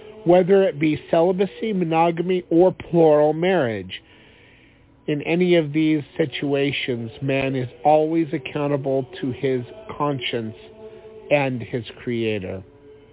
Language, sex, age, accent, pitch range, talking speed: English, male, 50-69, American, 120-155 Hz, 105 wpm